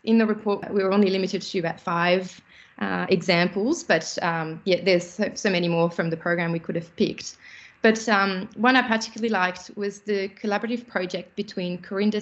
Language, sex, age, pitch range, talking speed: English, female, 20-39, 180-225 Hz, 185 wpm